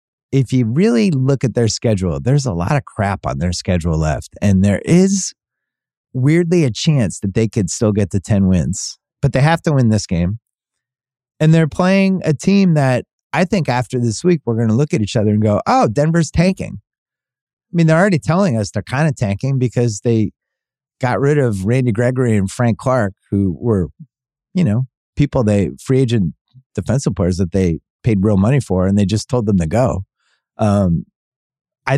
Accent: American